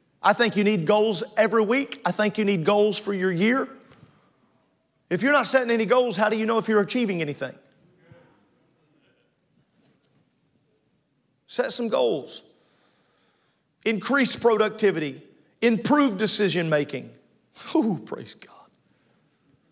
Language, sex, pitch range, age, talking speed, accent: English, male, 165-230 Hz, 40-59, 120 wpm, American